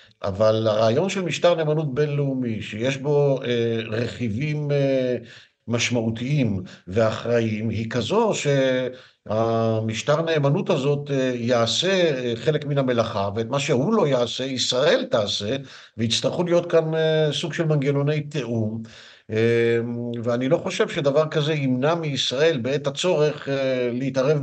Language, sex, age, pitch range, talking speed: Hebrew, male, 50-69, 115-150 Hz, 110 wpm